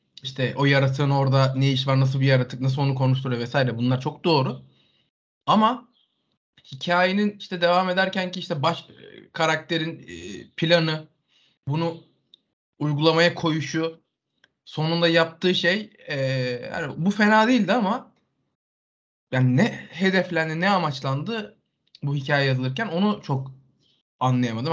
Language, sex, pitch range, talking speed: Turkish, male, 135-190 Hz, 120 wpm